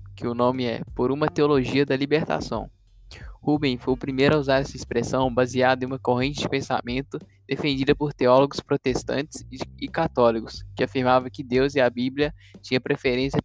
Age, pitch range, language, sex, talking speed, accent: 10-29, 125-140 Hz, Portuguese, male, 170 wpm, Brazilian